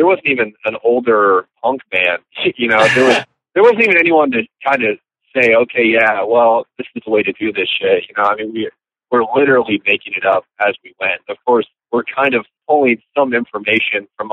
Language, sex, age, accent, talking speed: English, male, 30-49, American, 210 wpm